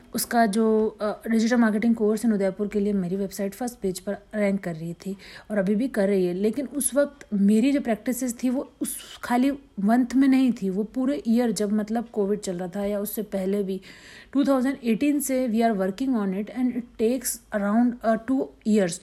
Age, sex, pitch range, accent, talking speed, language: 50-69, female, 205-245 Hz, native, 200 wpm, Hindi